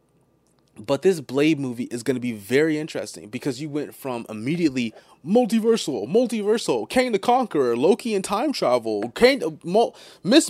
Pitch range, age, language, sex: 130-180 Hz, 30-49, English, male